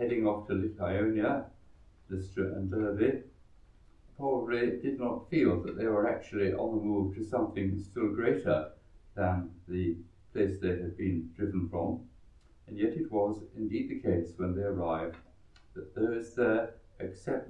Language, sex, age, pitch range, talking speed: English, male, 60-79, 85-105 Hz, 150 wpm